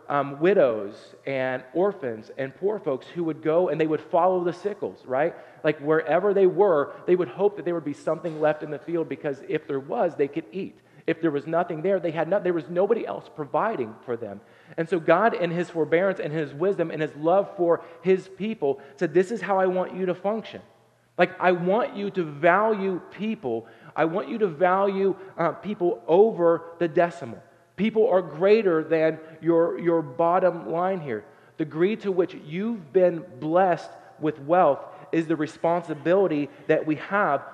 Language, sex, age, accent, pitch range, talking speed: English, male, 40-59, American, 155-190 Hz, 190 wpm